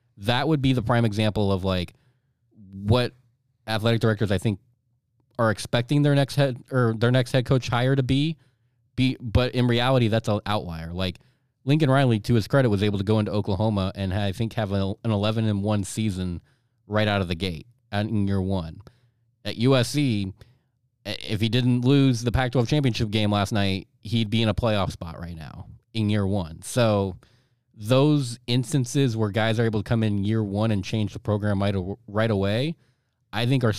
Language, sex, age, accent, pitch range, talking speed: English, male, 20-39, American, 100-125 Hz, 195 wpm